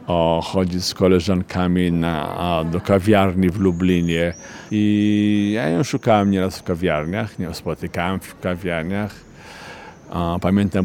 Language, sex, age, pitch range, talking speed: Polish, male, 50-69, 90-105 Hz, 125 wpm